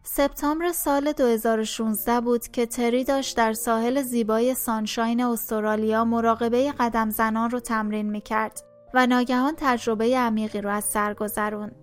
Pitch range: 220-255 Hz